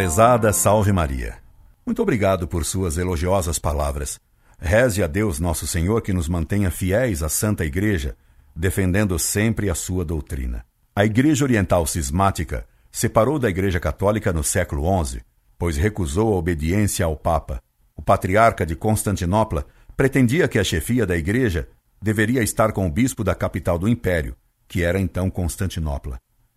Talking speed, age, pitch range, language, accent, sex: 150 wpm, 60-79, 85-110 Hz, Portuguese, Brazilian, male